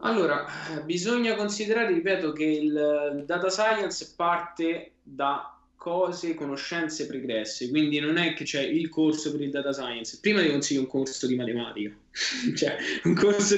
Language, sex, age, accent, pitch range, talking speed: Italian, male, 20-39, native, 155-210 Hz, 150 wpm